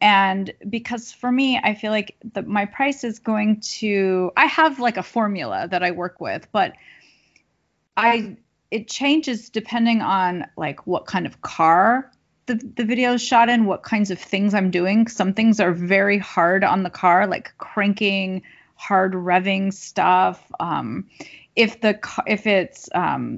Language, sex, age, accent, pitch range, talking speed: English, female, 30-49, American, 185-230 Hz, 165 wpm